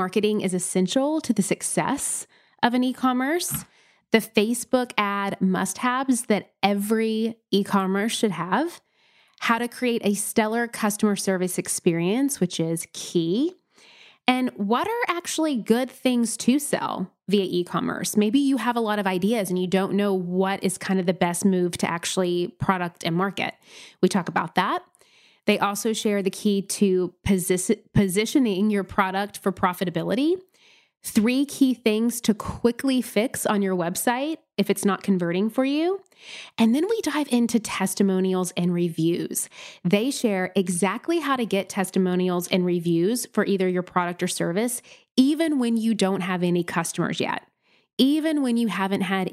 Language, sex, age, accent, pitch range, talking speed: English, female, 20-39, American, 185-240 Hz, 155 wpm